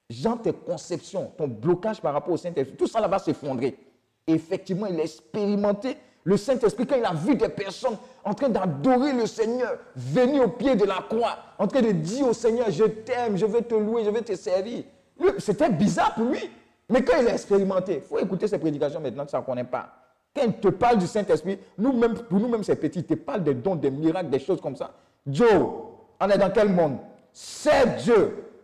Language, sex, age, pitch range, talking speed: French, male, 50-69, 175-235 Hz, 215 wpm